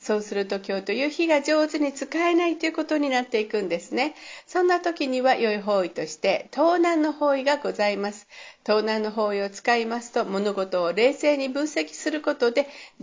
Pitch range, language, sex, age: 205-295 Hz, Japanese, female, 50-69